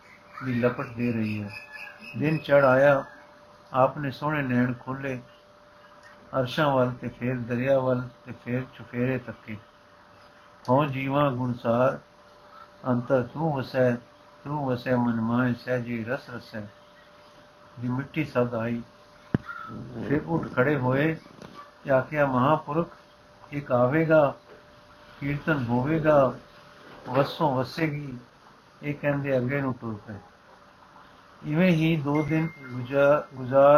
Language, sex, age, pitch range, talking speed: Punjabi, male, 60-79, 125-145 Hz, 100 wpm